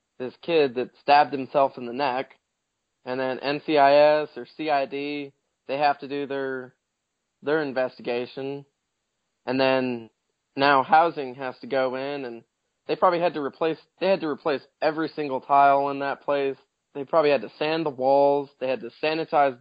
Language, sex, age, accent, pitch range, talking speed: English, male, 20-39, American, 130-160 Hz, 170 wpm